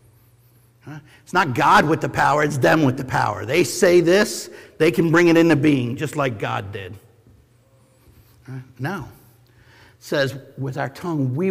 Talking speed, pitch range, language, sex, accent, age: 160 wpm, 125-175 Hz, English, male, American, 50-69